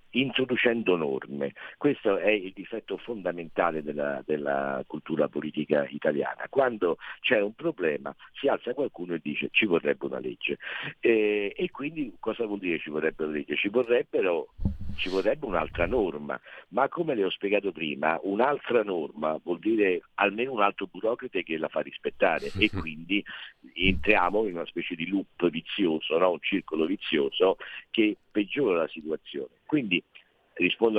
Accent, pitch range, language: native, 85-130 Hz, Italian